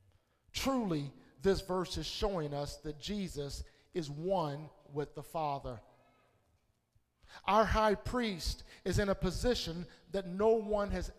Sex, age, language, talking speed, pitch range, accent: male, 50-69, English, 130 wpm, 170-245 Hz, American